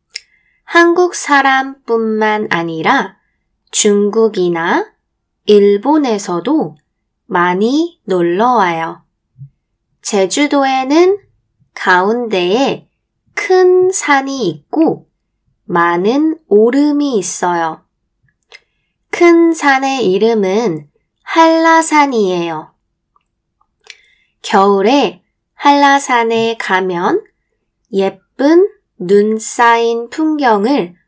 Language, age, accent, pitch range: Korean, 20-39, native, 185-290 Hz